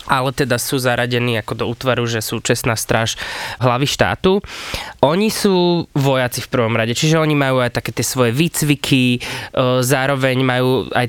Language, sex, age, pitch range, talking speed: Slovak, male, 20-39, 125-145 Hz, 160 wpm